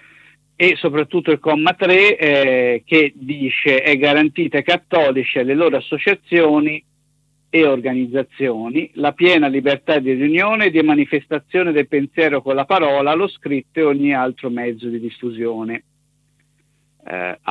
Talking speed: 135 wpm